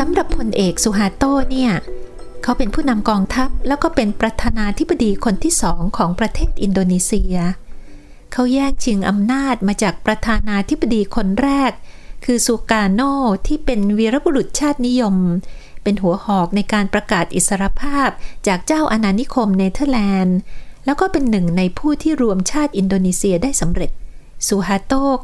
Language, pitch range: Thai, 195-265 Hz